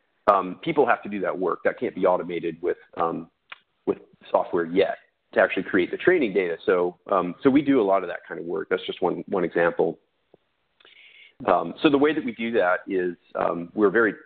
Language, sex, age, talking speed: English, male, 40-59, 220 wpm